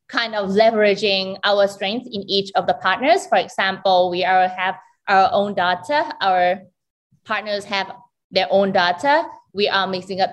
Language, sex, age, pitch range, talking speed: English, female, 20-39, 185-225 Hz, 165 wpm